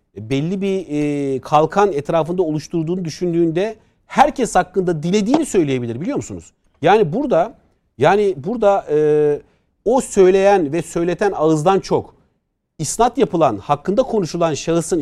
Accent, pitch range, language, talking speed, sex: native, 165-220 Hz, Turkish, 110 wpm, male